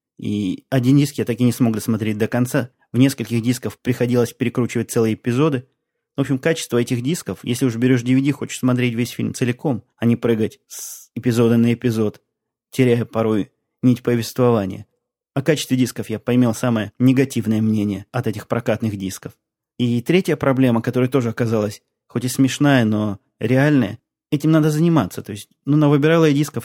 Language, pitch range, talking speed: Russian, 110-130 Hz, 170 wpm